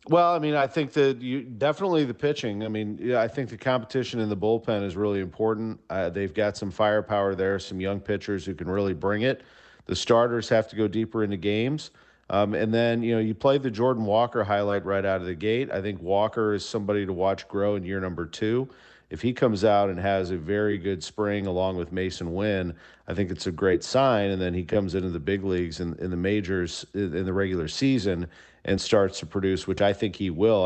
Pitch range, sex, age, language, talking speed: 95-110 Hz, male, 40-59, English, 235 wpm